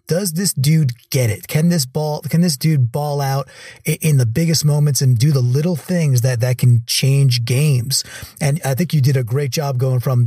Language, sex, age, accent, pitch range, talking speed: English, male, 30-49, American, 125-150 Hz, 215 wpm